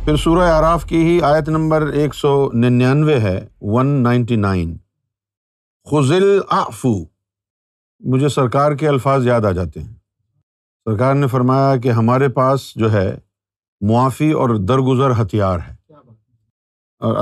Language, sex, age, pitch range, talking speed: Urdu, male, 50-69, 100-145 Hz, 130 wpm